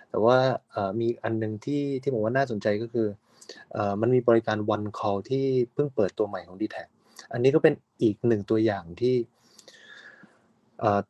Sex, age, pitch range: male, 20-39, 105-125 Hz